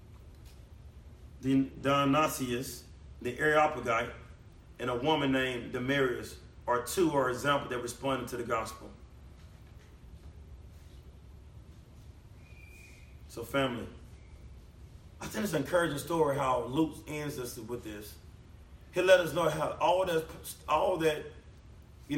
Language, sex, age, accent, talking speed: English, male, 30-49, American, 115 wpm